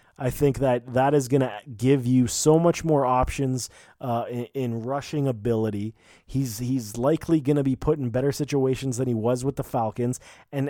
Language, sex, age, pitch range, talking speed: English, male, 20-39, 120-145 Hz, 195 wpm